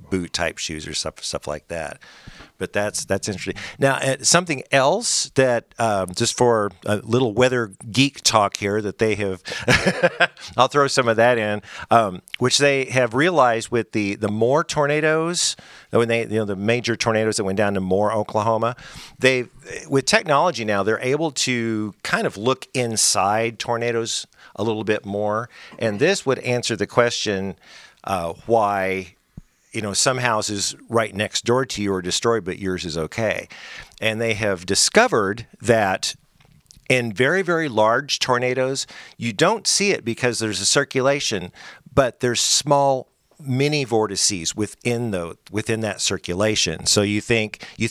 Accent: American